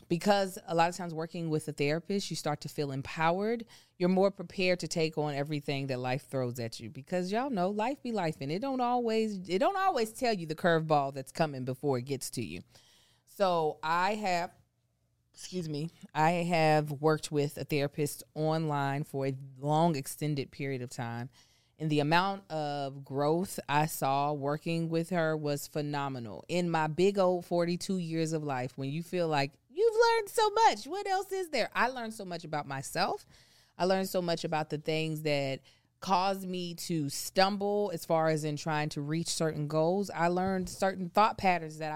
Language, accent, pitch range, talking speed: English, American, 145-190 Hz, 190 wpm